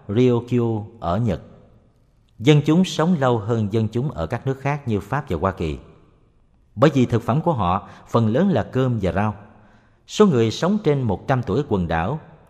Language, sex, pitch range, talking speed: Vietnamese, male, 95-135 Hz, 185 wpm